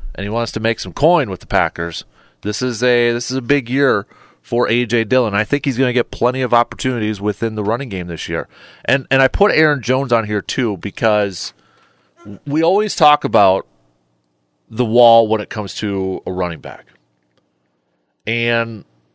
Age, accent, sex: 30-49, American, male